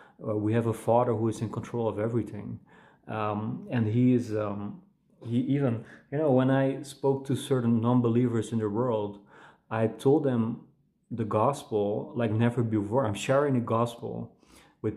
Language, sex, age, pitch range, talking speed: English, male, 30-49, 110-125 Hz, 165 wpm